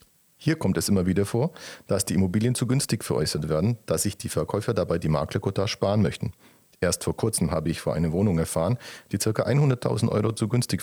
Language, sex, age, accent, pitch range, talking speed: German, male, 40-59, German, 90-120 Hz, 205 wpm